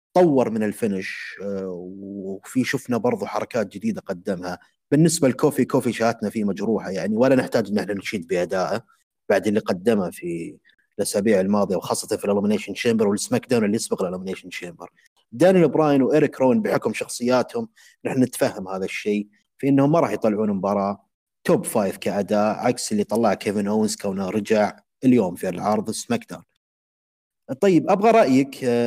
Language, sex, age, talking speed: Arabic, male, 30-49, 150 wpm